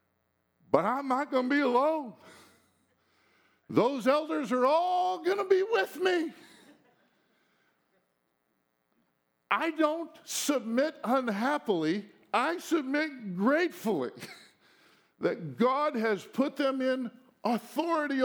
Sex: male